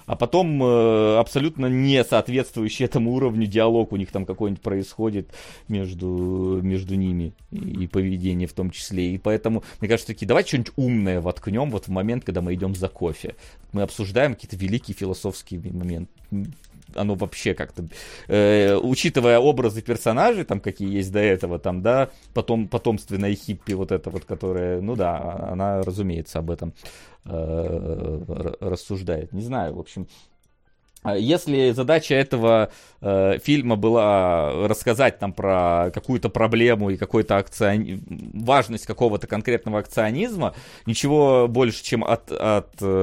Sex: male